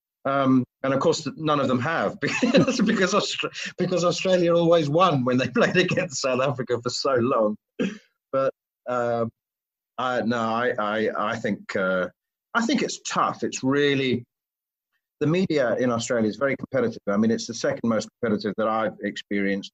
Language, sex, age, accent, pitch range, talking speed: English, male, 40-59, British, 110-135 Hz, 165 wpm